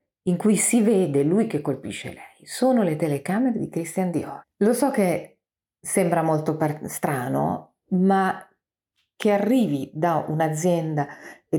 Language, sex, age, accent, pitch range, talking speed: Italian, female, 40-59, native, 145-195 Hz, 140 wpm